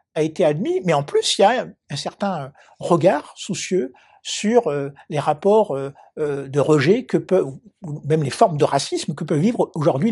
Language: French